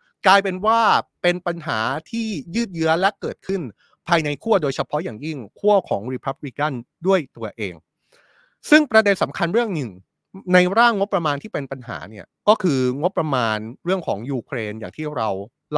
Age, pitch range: 30-49, 125-185 Hz